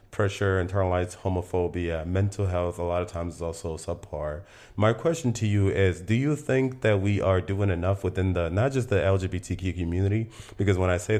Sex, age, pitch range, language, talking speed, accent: male, 30-49, 90-100 Hz, English, 195 wpm, American